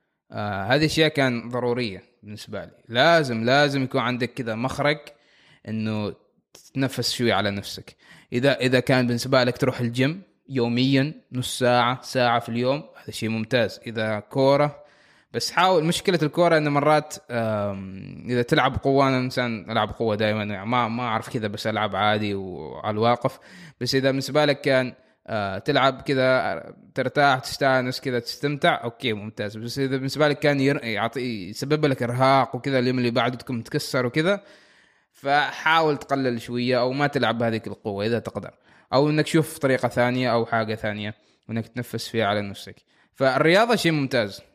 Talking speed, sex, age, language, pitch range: 150 wpm, male, 20-39, Arabic, 115-140 Hz